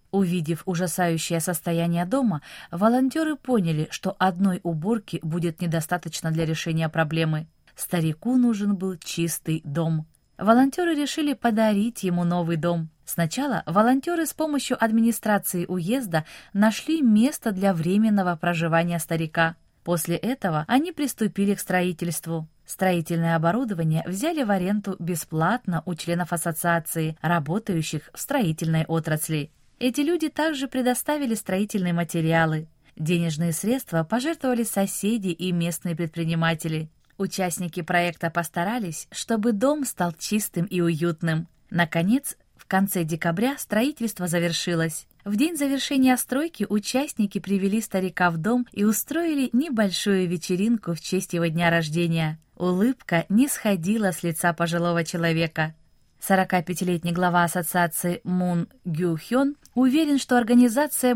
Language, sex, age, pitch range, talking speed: Russian, female, 20-39, 170-230 Hz, 115 wpm